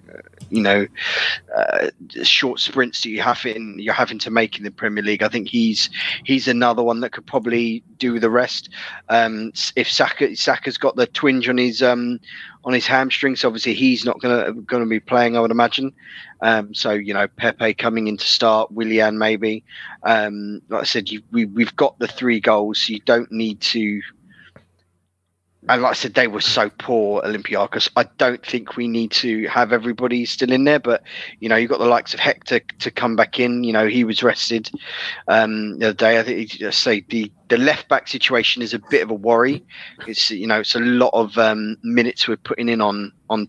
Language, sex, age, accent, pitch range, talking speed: English, male, 20-39, British, 105-120 Hz, 210 wpm